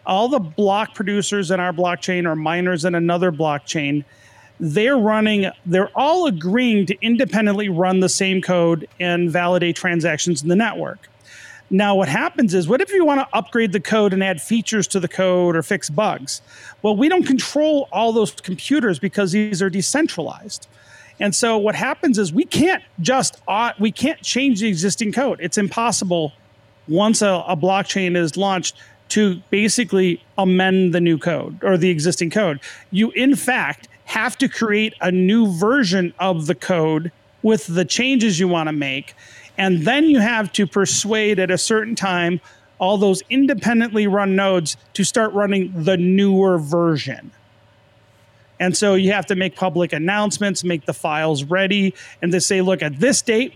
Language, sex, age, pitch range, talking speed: English, male, 40-59, 175-220 Hz, 170 wpm